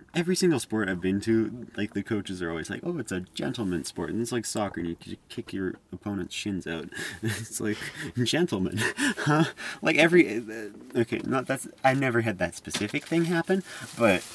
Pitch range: 90-115 Hz